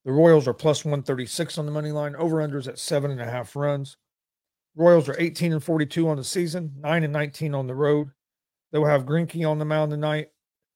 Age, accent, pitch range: 40-59, American, 135-155 Hz